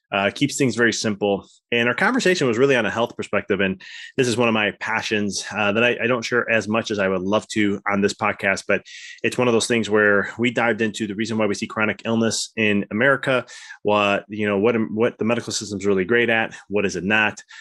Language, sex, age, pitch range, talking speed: English, male, 20-39, 100-120 Hz, 245 wpm